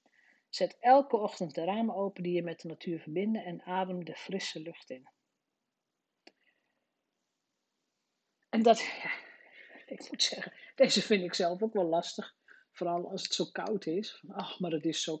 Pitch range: 175-235 Hz